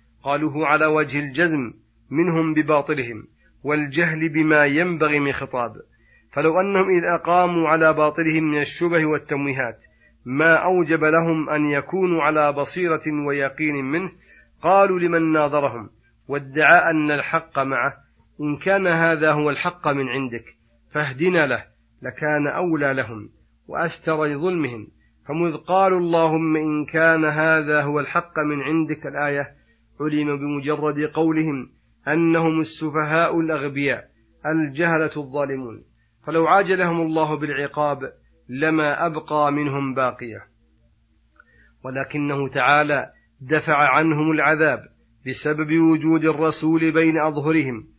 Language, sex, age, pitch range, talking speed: Arabic, male, 40-59, 140-160 Hz, 110 wpm